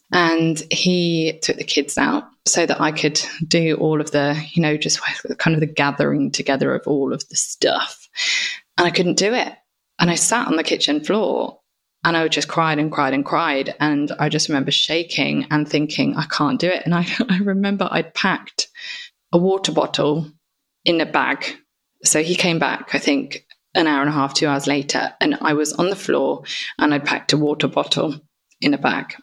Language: English